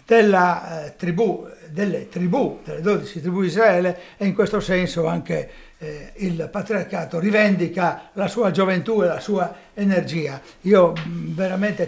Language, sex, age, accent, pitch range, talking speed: Italian, male, 60-79, native, 175-215 Hz, 145 wpm